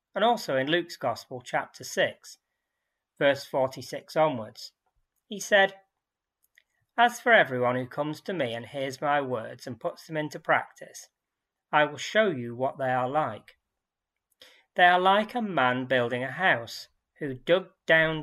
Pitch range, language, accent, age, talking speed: 125-180 Hz, English, British, 40-59, 155 wpm